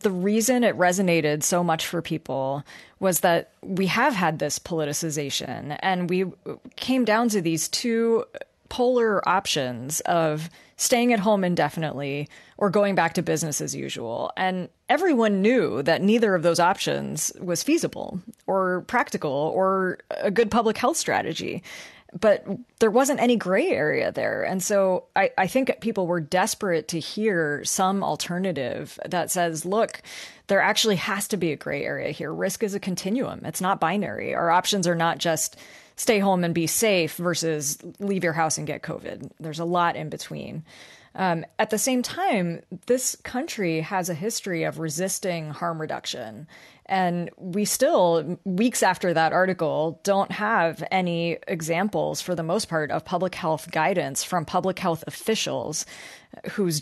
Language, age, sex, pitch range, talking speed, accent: English, 30-49, female, 165-210 Hz, 160 wpm, American